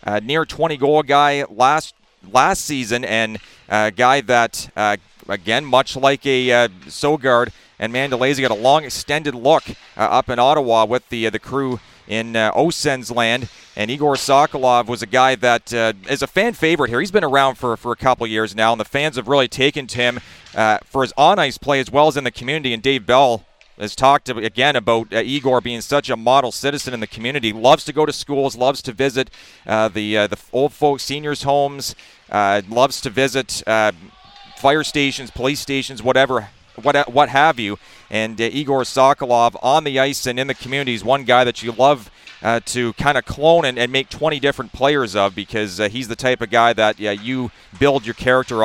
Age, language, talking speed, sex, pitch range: 40-59, English, 210 wpm, male, 115-140 Hz